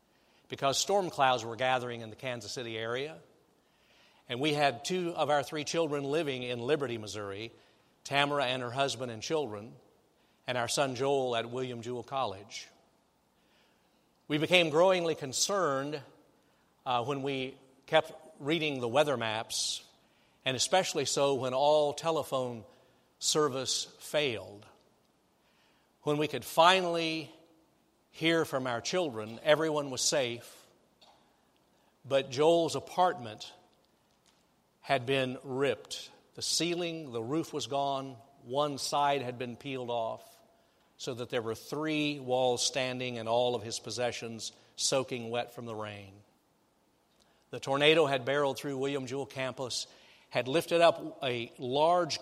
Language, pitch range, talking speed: English, 125-150 Hz, 130 wpm